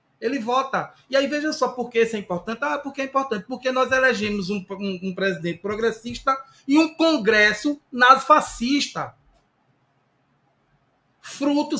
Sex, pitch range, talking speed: male, 190-260 Hz, 140 wpm